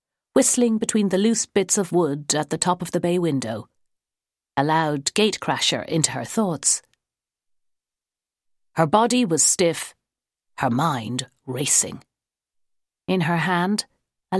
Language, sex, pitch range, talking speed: English, female, 140-190 Hz, 135 wpm